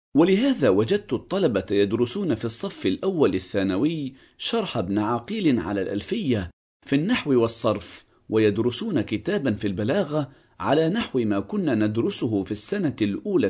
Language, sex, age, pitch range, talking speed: English, male, 40-59, 105-155 Hz, 125 wpm